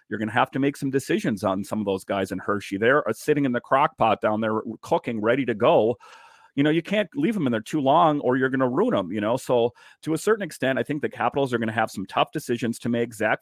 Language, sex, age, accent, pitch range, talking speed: English, male, 40-59, American, 110-135 Hz, 285 wpm